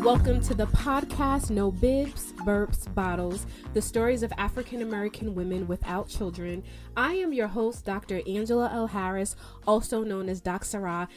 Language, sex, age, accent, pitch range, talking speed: English, female, 20-39, American, 195-245 Hz, 150 wpm